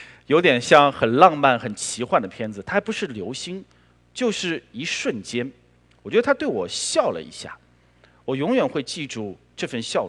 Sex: male